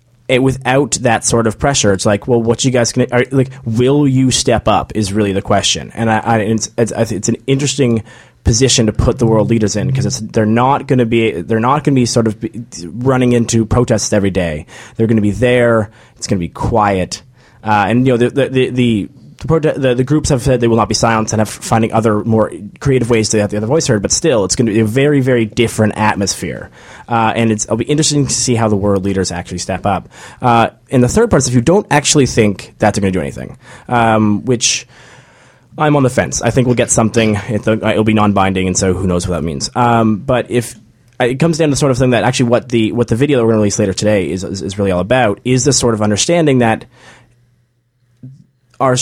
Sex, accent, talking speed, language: male, American, 245 wpm, English